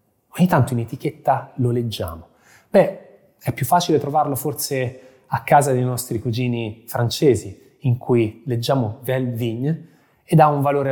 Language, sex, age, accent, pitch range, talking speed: Italian, male, 20-39, native, 110-150 Hz, 150 wpm